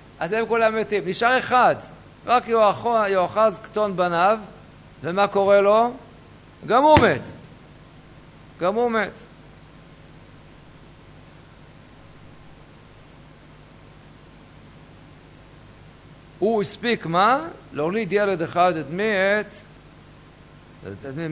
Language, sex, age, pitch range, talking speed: Hebrew, male, 50-69, 160-220 Hz, 80 wpm